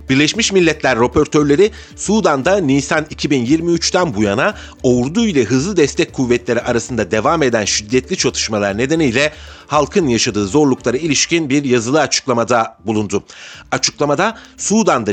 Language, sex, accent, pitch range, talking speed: Turkish, male, native, 115-165 Hz, 115 wpm